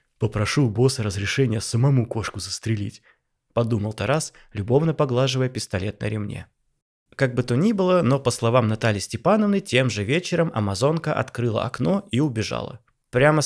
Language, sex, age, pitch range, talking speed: Russian, male, 20-39, 115-150 Hz, 150 wpm